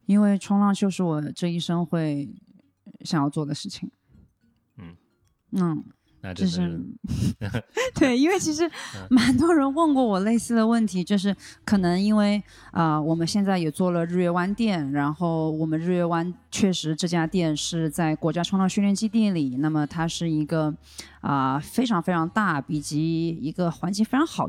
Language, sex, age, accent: Chinese, female, 20-39, native